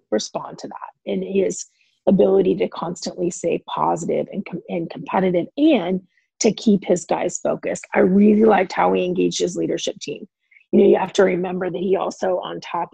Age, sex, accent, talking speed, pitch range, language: 30-49, female, American, 185 wpm, 185-225 Hz, English